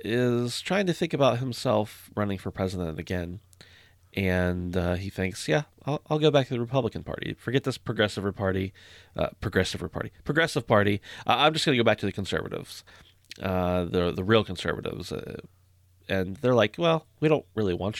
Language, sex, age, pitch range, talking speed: English, male, 30-49, 90-110 Hz, 185 wpm